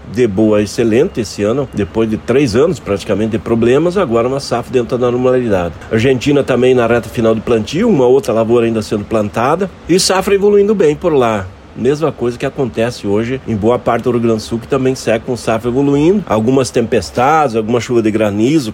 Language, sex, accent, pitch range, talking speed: Portuguese, male, Brazilian, 110-140 Hz, 200 wpm